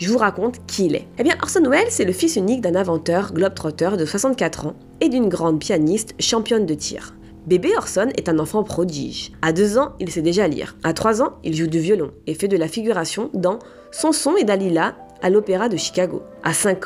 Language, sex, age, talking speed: French, female, 20-39, 220 wpm